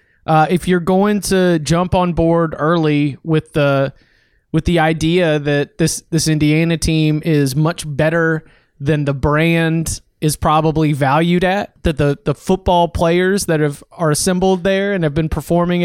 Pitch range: 155-185 Hz